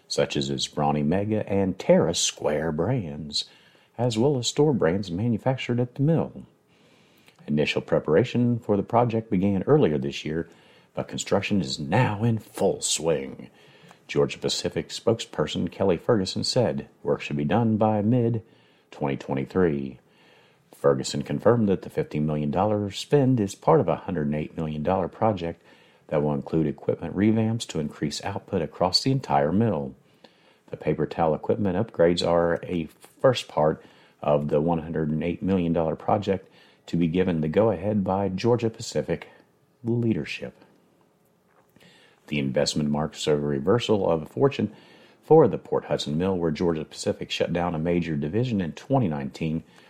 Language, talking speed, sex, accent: English, 140 wpm, male, American